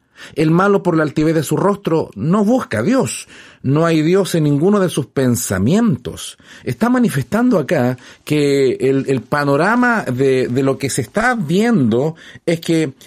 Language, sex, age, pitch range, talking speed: Spanish, male, 40-59, 125-170 Hz, 165 wpm